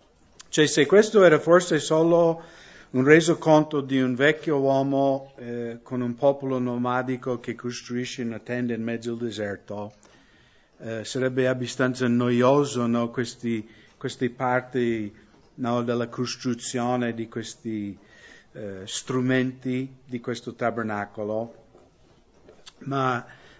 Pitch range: 120-140 Hz